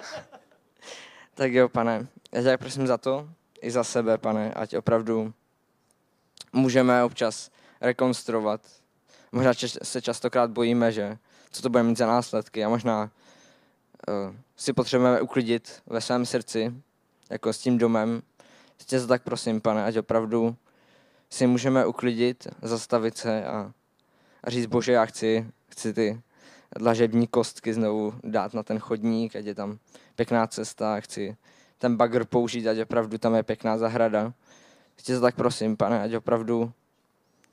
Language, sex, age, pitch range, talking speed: Czech, male, 20-39, 110-125 Hz, 140 wpm